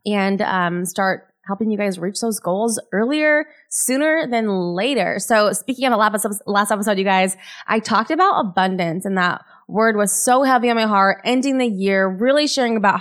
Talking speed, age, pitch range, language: 185 wpm, 20-39, 200-245 Hz, English